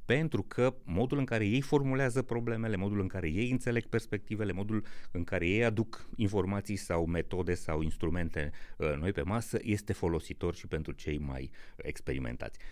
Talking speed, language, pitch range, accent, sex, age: 160 wpm, Romanian, 85-120 Hz, native, male, 30-49